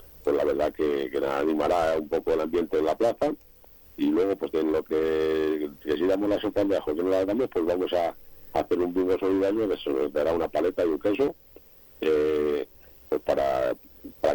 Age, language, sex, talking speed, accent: 60-79, Spanish, male, 210 wpm, Spanish